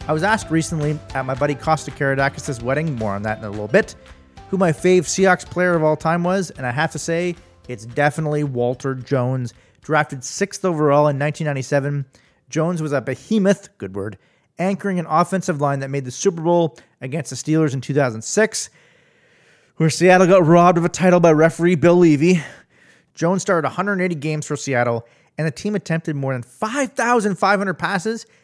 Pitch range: 140-200 Hz